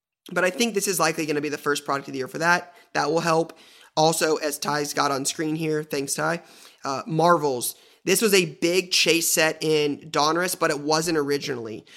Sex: male